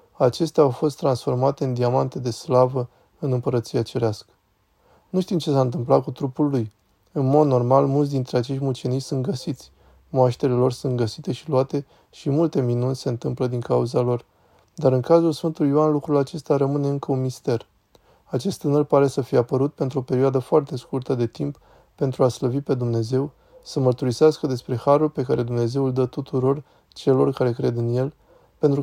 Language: Romanian